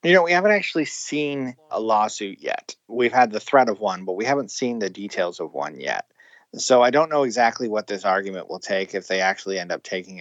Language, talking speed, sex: English, 235 wpm, male